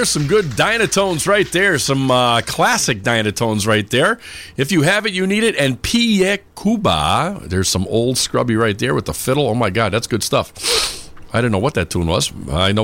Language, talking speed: English, 210 wpm